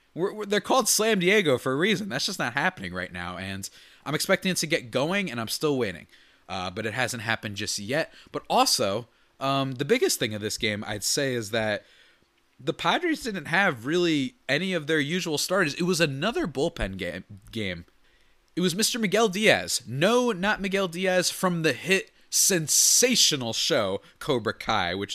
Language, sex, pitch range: English, male, 110-180 Hz